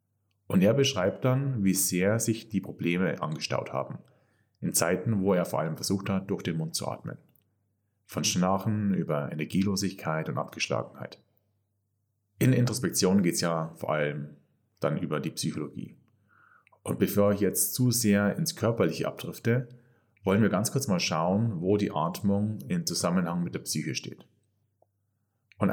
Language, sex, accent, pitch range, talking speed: German, male, German, 95-110 Hz, 155 wpm